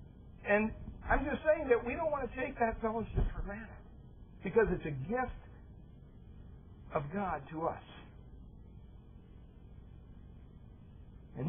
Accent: American